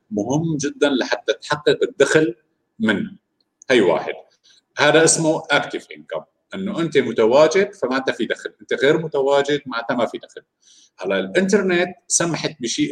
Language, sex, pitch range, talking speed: Arabic, male, 115-180 Hz, 135 wpm